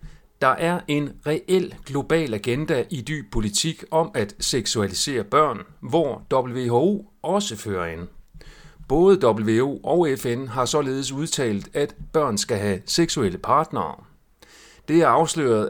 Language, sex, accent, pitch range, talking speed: Danish, male, native, 105-155 Hz, 130 wpm